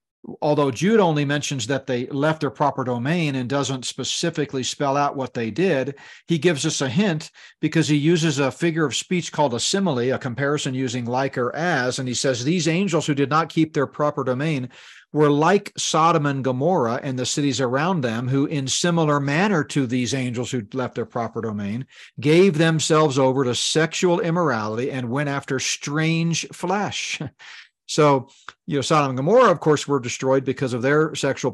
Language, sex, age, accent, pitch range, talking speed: English, male, 40-59, American, 125-155 Hz, 185 wpm